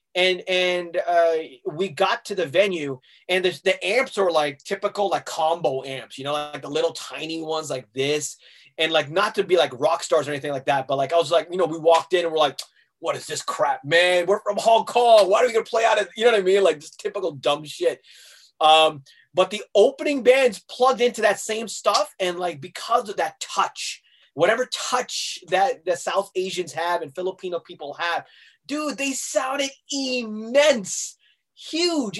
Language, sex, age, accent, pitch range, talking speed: English, male, 20-39, American, 165-225 Hz, 205 wpm